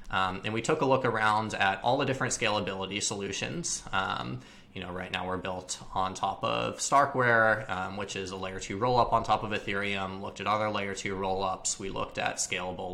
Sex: male